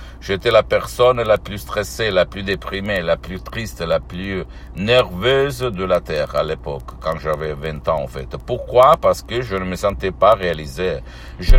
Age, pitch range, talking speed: 60-79, 85-115 Hz, 185 wpm